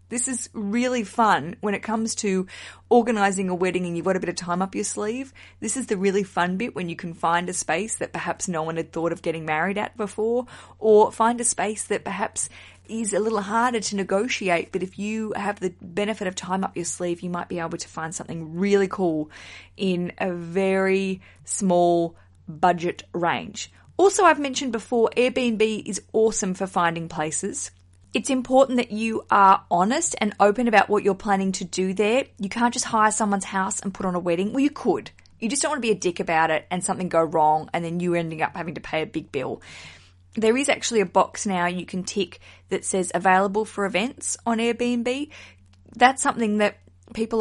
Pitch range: 175-225 Hz